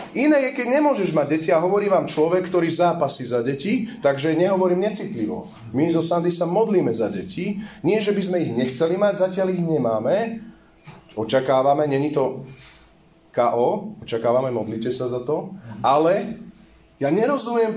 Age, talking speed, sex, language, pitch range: 40-59, 155 wpm, male, Slovak, 135-190 Hz